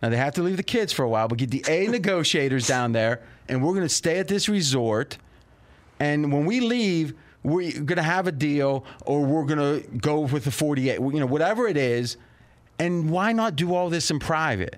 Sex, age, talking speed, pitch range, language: male, 30-49, 225 wpm, 135-175 Hz, English